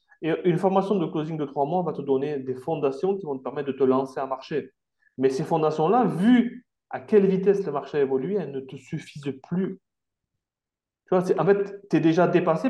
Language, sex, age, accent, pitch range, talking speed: French, male, 30-49, French, 135-195 Hz, 225 wpm